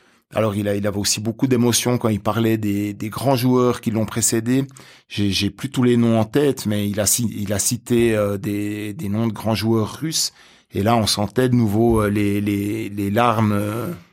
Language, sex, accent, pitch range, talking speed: French, male, French, 105-125 Hz, 210 wpm